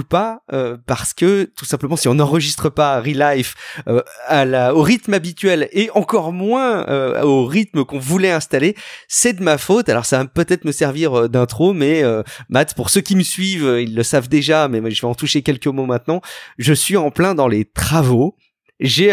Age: 40-59